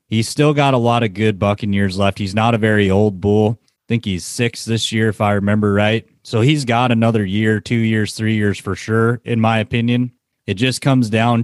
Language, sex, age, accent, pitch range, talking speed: English, male, 30-49, American, 105-125 Hz, 225 wpm